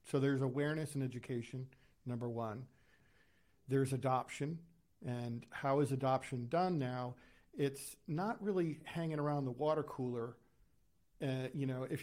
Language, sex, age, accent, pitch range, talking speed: English, male, 50-69, American, 125-150 Hz, 135 wpm